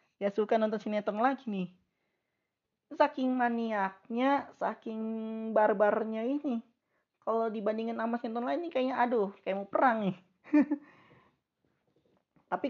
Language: Indonesian